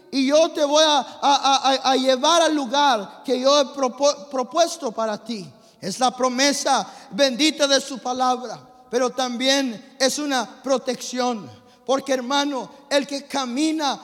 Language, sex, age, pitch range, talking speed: English, male, 50-69, 245-285 Hz, 135 wpm